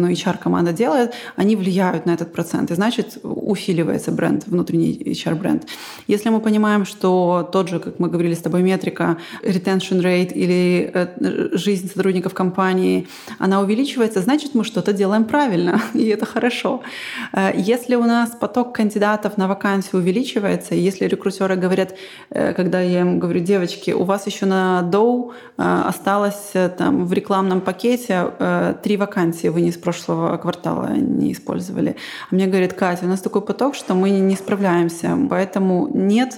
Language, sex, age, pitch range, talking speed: Russian, female, 20-39, 180-225 Hz, 150 wpm